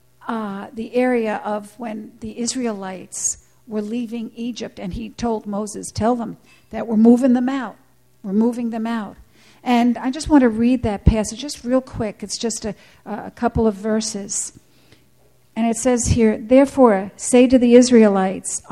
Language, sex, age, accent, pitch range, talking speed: English, female, 60-79, American, 215-255 Hz, 170 wpm